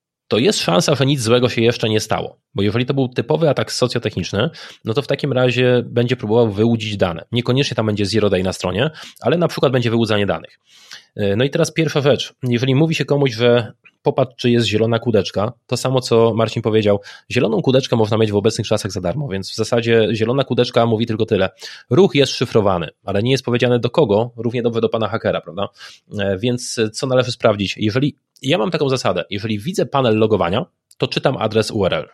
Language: Polish